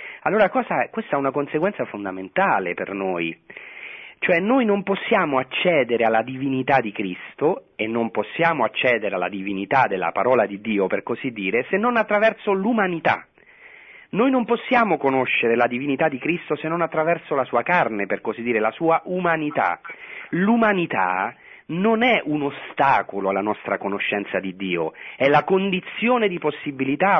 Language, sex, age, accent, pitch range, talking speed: Italian, male, 40-59, native, 115-185 Hz, 155 wpm